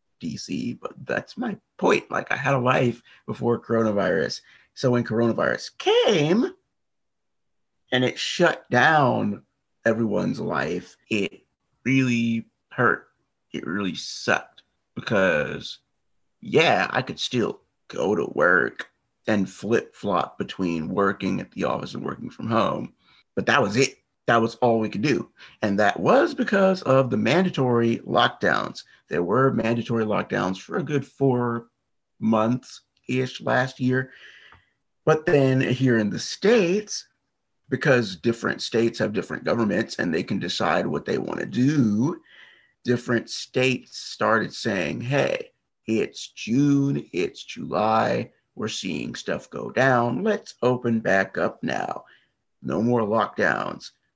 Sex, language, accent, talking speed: male, English, American, 130 wpm